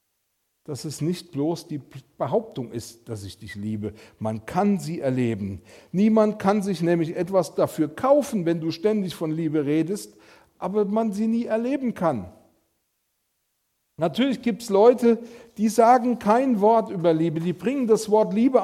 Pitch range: 145-205 Hz